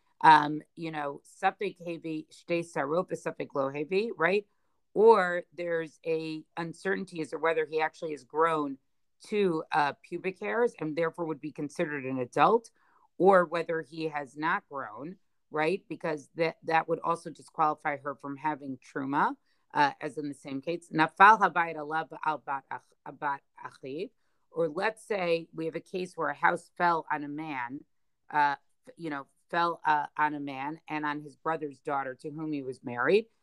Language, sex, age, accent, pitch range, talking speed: English, female, 40-59, American, 150-180 Hz, 145 wpm